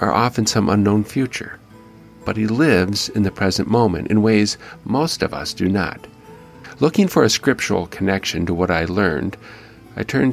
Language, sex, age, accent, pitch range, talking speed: English, male, 50-69, American, 90-115 Hz, 175 wpm